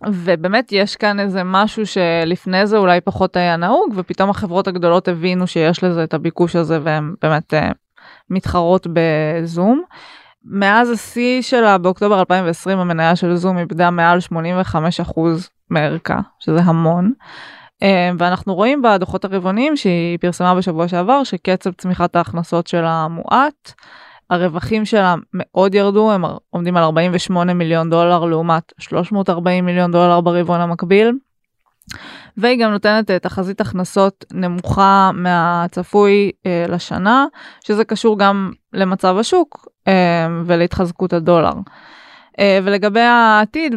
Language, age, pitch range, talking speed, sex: Hebrew, 20-39, 170-205 Hz, 120 wpm, female